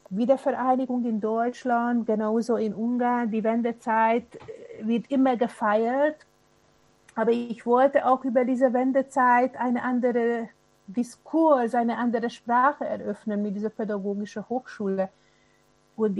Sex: female